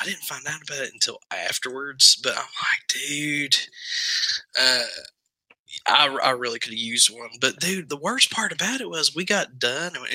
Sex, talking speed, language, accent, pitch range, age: male, 190 wpm, English, American, 120-150 Hz, 20-39